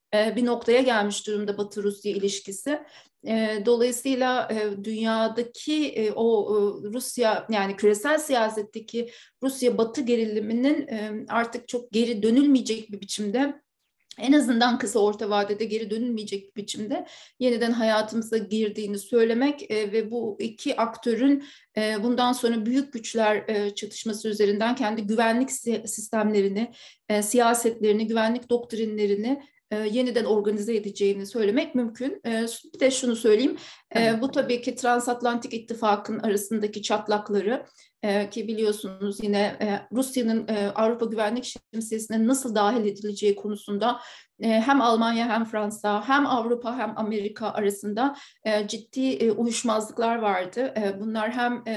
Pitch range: 210-245 Hz